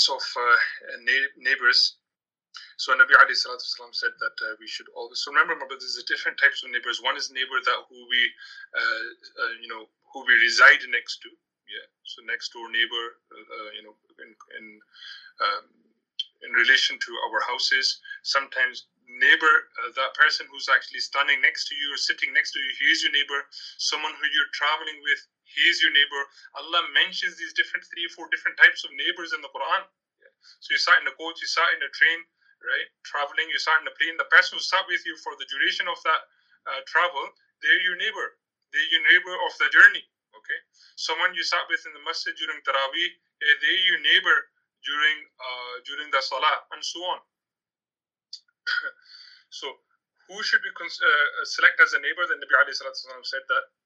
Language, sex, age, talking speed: English, male, 30-49, 185 wpm